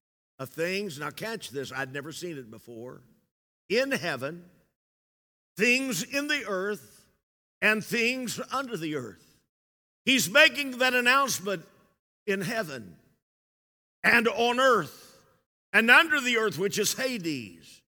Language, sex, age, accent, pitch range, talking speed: English, male, 50-69, American, 155-225 Hz, 125 wpm